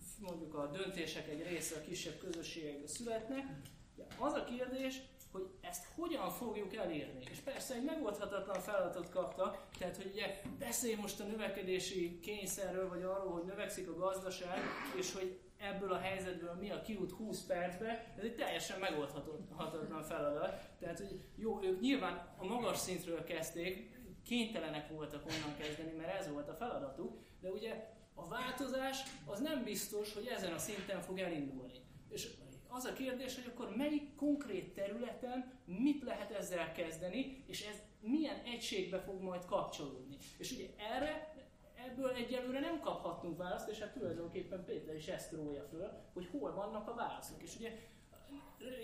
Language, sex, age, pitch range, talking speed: Hungarian, male, 30-49, 180-235 Hz, 155 wpm